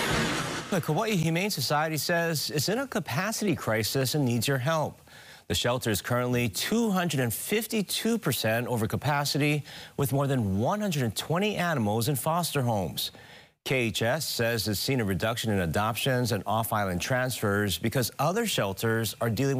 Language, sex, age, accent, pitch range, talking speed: English, male, 40-59, American, 115-150 Hz, 140 wpm